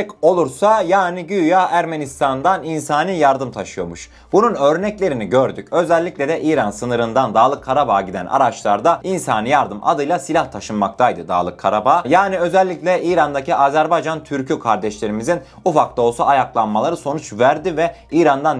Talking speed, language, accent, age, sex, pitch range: 125 wpm, Turkish, native, 30-49, male, 120-175 Hz